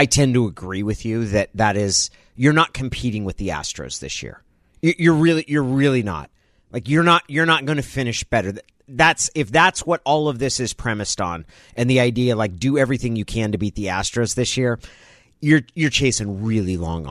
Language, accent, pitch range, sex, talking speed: English, American, 105-145 Hz, male, 210 wpm